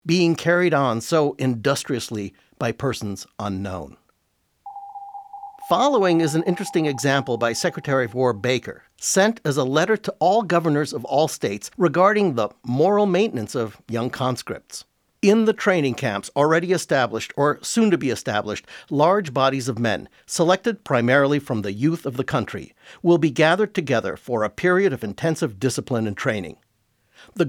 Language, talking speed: English, 155 wpm